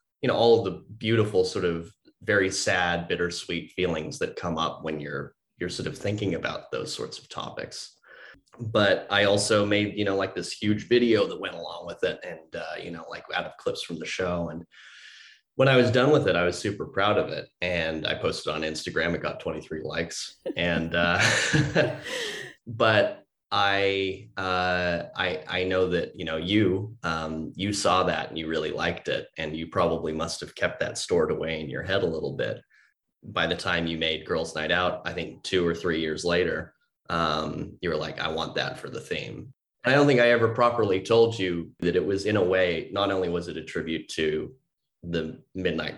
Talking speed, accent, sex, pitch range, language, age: 205 wpm, American, male, 80-105 Hz, English, 30-49